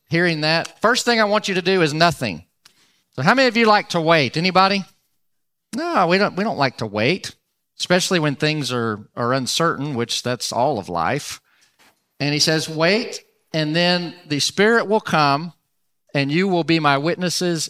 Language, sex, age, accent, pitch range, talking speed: English, male, 40-59, American, 125-165 Hz, 185 wpm